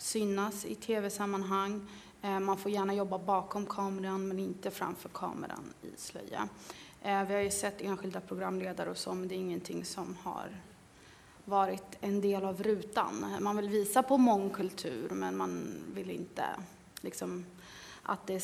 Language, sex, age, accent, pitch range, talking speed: Swedish, female, 30-49, native, 190-210 Hz, 145 wpm